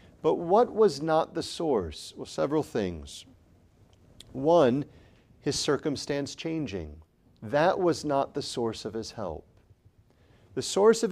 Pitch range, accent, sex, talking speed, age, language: 105-155 Hz, American, male, 130 wpm, 40-59, English